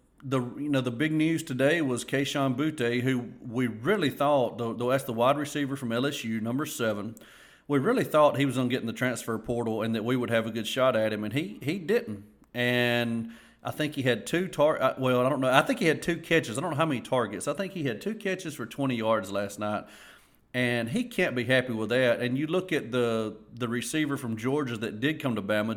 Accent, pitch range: American, 115-145 Hz